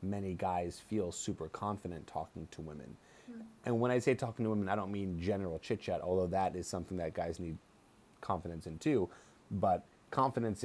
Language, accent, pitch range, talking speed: English, American, 90-105 Hz, 185 wpm